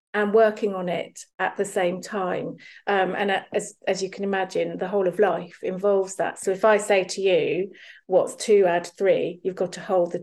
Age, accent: 40-59, British